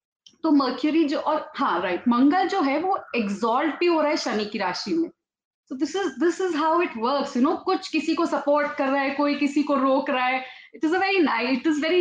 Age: 30-49